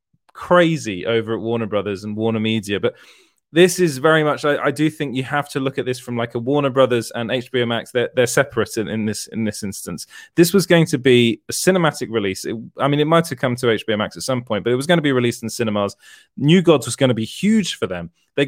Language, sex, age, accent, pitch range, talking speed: English, male, 20-39, British, 120-170 Hz, 255 wpm